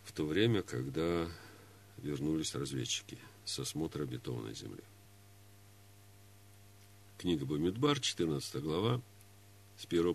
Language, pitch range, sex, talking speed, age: Russian, 100-110 Hz, male, 95 wpm, 50-69